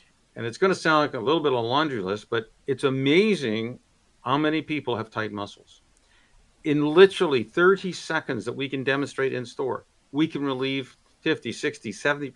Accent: American